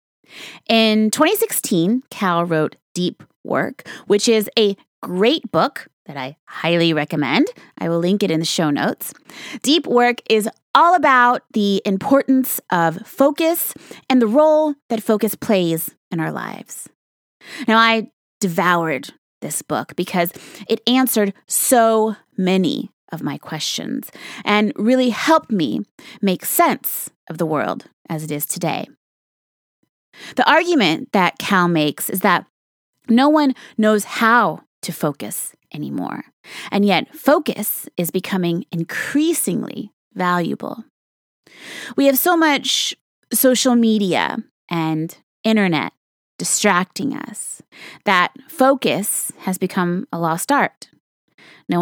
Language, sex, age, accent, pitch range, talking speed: English, female, 20-39, American, 180-260 Hz, 125 wpm